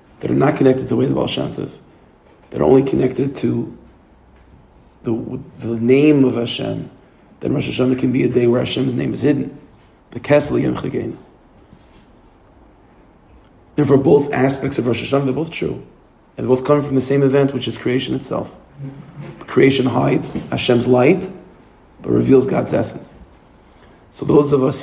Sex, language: male, English